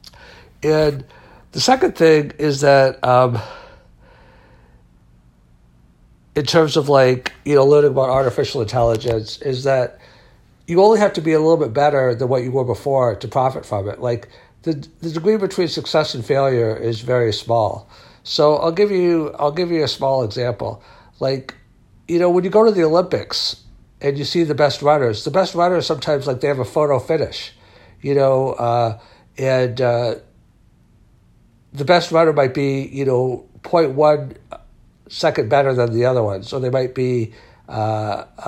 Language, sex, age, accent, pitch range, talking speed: English, male, 60-79, American, 120-150 Hz, 165 wpm